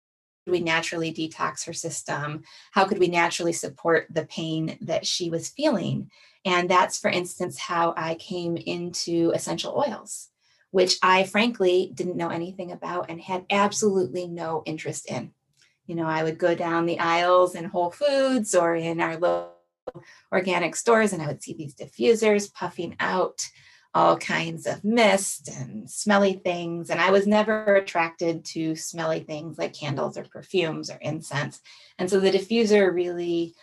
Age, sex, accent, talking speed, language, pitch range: 30-49, female, American, 160 wpm, English, 165-190 Hz